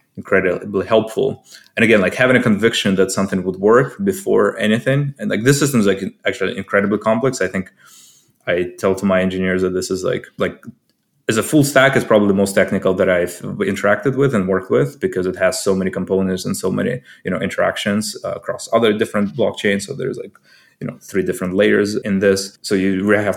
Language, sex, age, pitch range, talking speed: English, male, 20-39, 95-115 Hz, 210 wpm